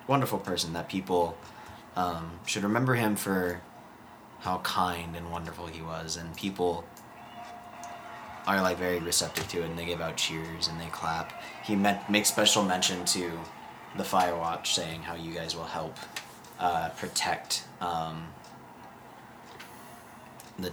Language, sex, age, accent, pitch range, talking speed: English, male, 20-39, American, 85-100 Hz, 140 wpm